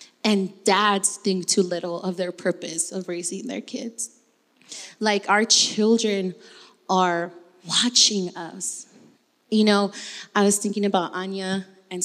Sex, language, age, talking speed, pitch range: female, English, 20-39, 130 wpm, 195-245 Hz